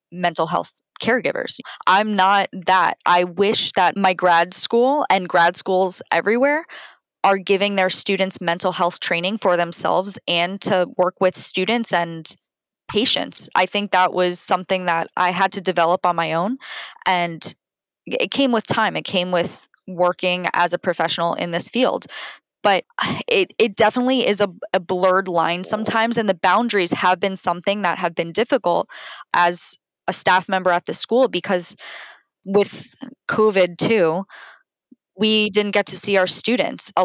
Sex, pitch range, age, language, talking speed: female, 175-205 Hz, 10-29, English, 160 wpm